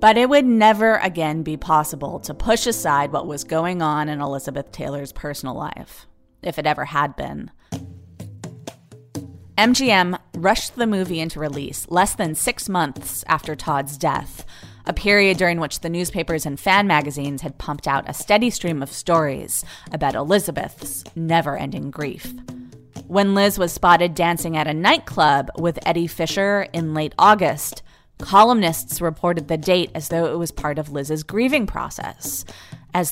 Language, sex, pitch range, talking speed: English, female, 145-185 Hz, 155 wpm